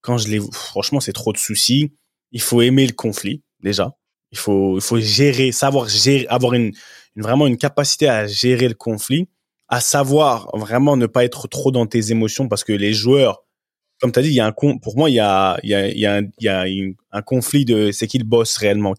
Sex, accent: male, French